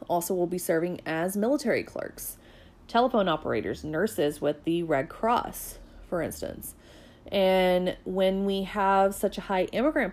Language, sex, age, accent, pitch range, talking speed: English, female, 30-49, American, 170-205 Hz, 140 wpm